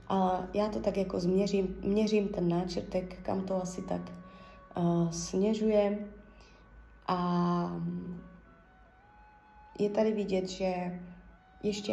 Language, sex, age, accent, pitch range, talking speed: Czech, female, 20-39, native, 180-210 Hz, 105 wpm